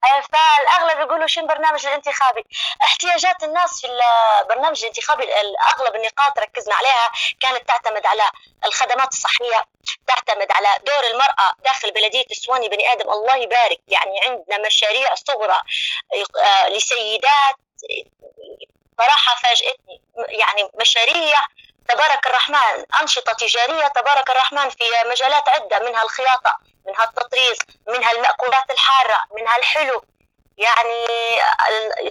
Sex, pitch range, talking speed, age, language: female, 225-280 Hz, 110 wpm, 20-39, Arabic